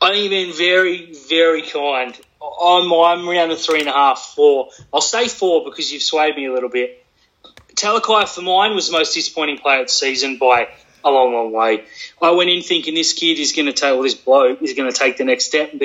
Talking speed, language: 240 wpm, English